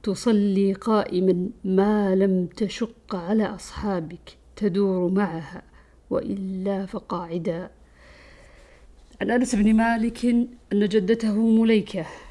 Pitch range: 180-210 Hz